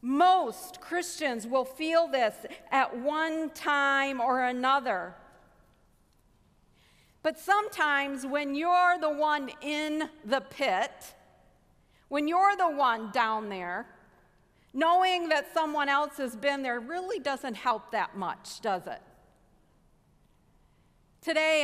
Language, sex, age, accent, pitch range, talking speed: English, female, 50-69, American, 235-305 Hz, 110 wpm